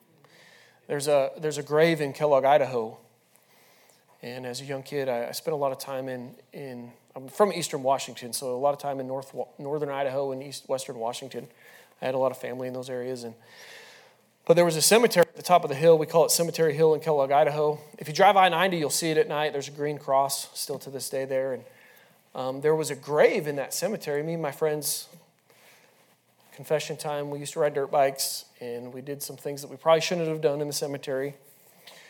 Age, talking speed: 30-49, 225 wpm